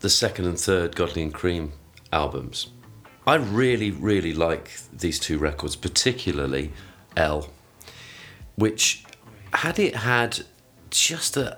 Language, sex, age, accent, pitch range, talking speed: English, male, 40-59, British, 75-105 Hz, 115 wpm